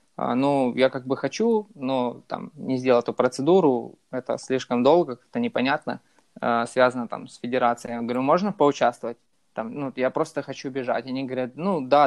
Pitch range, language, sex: 130-150 Hz, Russian, male